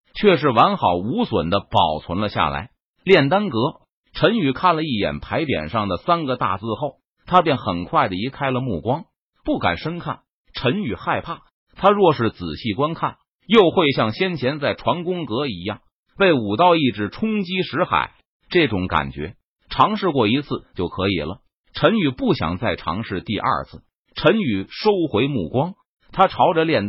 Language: Chinese